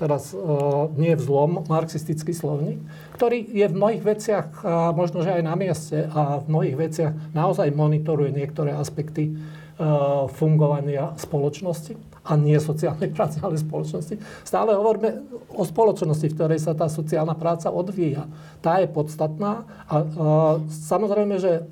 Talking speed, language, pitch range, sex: 145 wpm, Slovak, 155-175 Hz, male